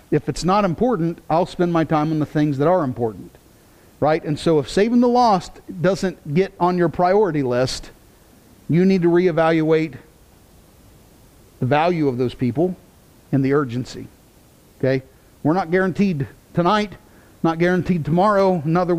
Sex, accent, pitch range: male, American, 160-195 Hz